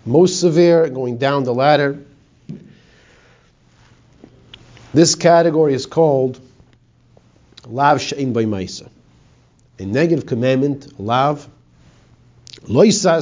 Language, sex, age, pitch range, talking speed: English, male, 50-69, 115-140 Hz, 85 wpm